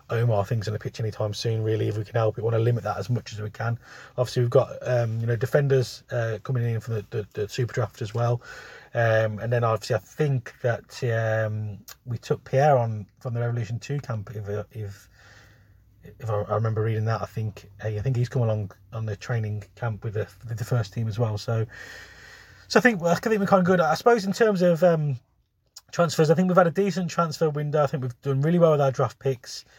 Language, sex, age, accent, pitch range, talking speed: English, male, 30-49, British, 115-150 Hz, 245 wpm